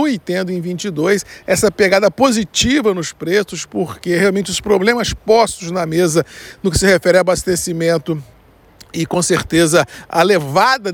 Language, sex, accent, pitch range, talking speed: Portuguese, male, Brazilian, 170-205 Hz, 150 wpm